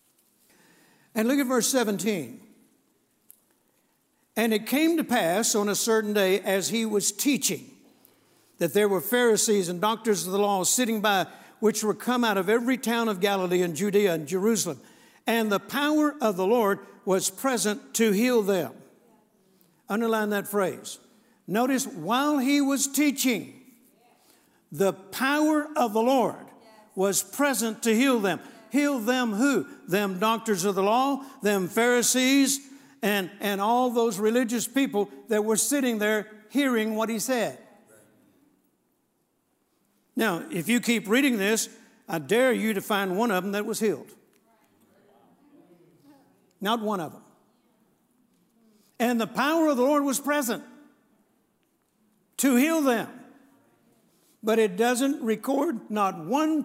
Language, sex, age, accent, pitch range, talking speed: English, male, 60-79, American, 205-255 Hz, 140 wpm